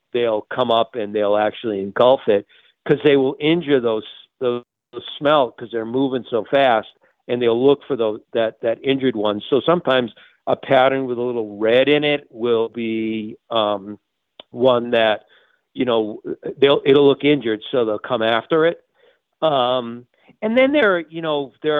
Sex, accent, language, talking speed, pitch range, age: male, American, English, 170 wpm, 120-160 Hz, 50-69